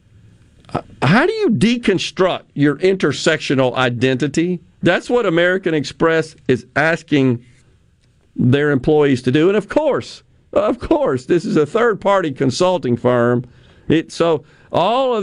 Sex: male